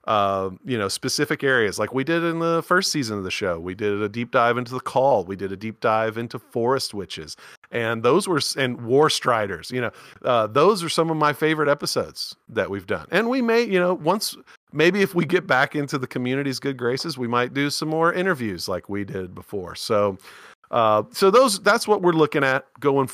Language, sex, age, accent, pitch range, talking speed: English, male, 40-59, American, 105-155 Hz, 225 wpm